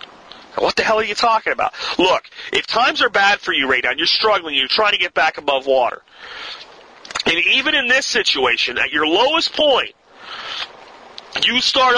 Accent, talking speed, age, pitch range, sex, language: American, 185 wpm, 40-59, 210-285 Hz, male, English